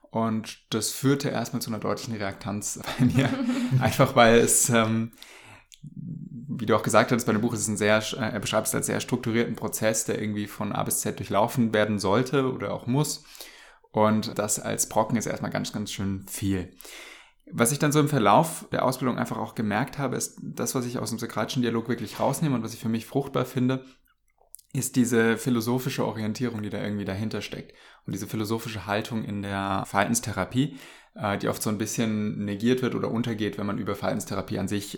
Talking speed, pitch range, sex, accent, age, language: 195 wpm, 105-125 Hz, male, German, 20-39, German